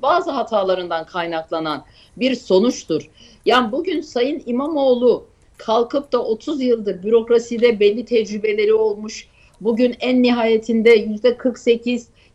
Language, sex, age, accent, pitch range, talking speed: Turkish, female, 50-69, native, 215-280 Hz, 100 wpm